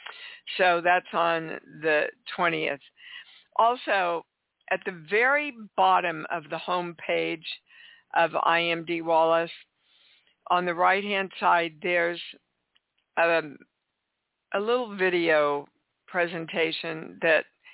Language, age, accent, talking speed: English, 60-79, American, 95 wpm